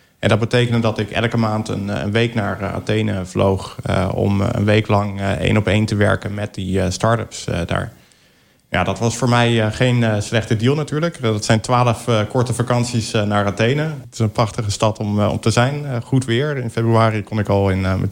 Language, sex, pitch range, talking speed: Dutch, male, 100-120 Hz, 190 wpm